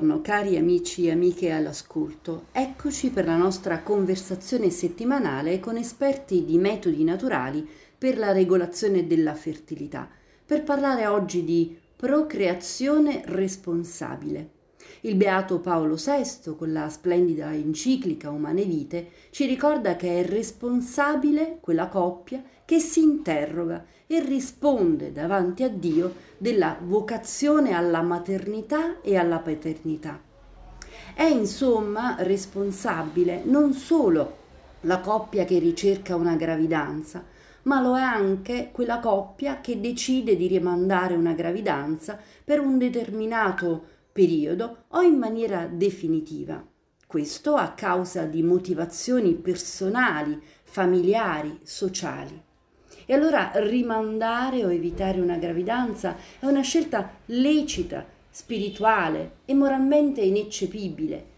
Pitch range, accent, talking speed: 175-260 Hz, native, 110 wpm